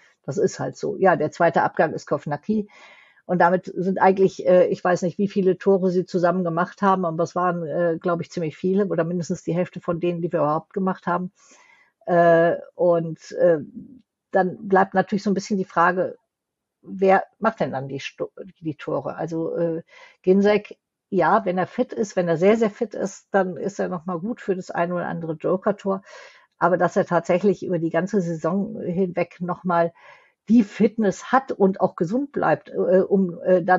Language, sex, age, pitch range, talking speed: German, female, 50-69, 175-205 Hz, 190 wpm